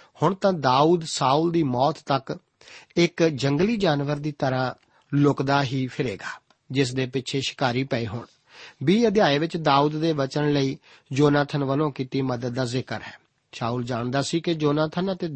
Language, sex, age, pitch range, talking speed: Punjabi, male, 50-69, 130-165 Hz, 160 wpm